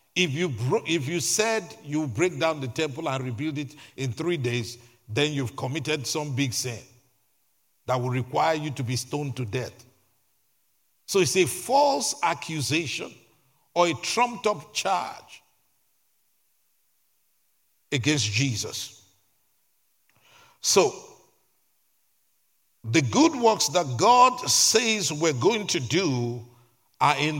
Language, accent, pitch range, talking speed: English, Nigerian, 125-165 Hz, 120 wpm